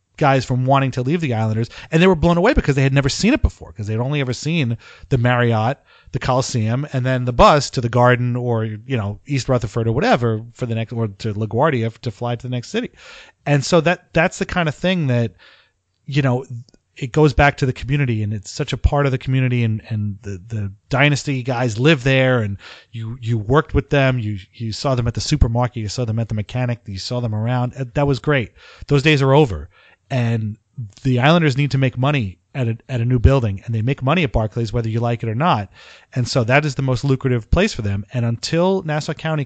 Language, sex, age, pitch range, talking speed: English, male, 30-49, 115-145 Hz, 235 wpm